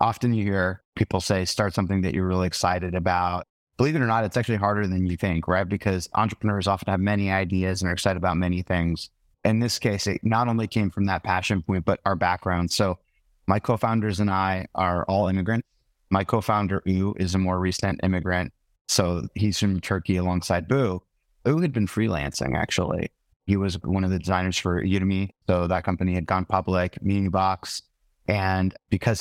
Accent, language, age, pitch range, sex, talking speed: American, English, 30-49, 90-105 Hz, male, 195 wpm